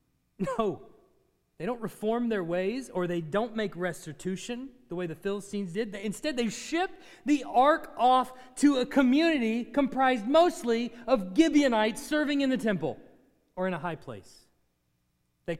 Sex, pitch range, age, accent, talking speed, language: male, 160-245 Hz, 30-49, American, 150 wpm, English